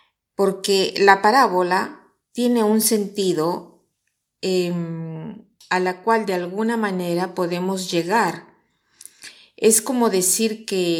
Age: 40-59